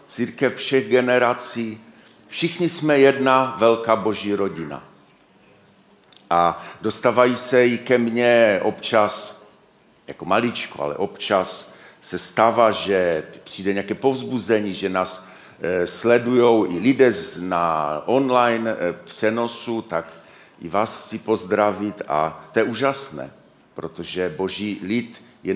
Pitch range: 100-125 Hz